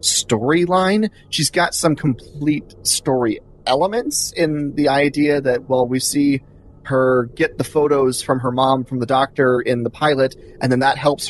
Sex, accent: male, American